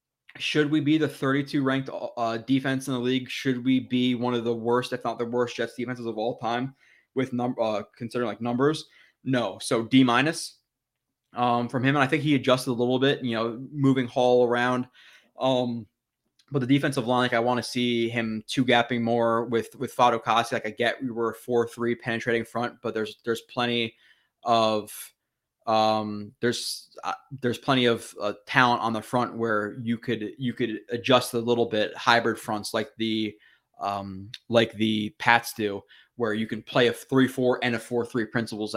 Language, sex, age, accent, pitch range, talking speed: English, male, 20-39, American, 115-135 Hz, 195 wpm